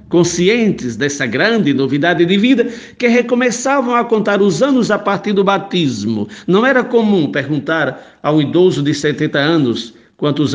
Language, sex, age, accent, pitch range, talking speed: Portuguese, male, 60-79, Brazilian, 175-240 Hz, 150 wpm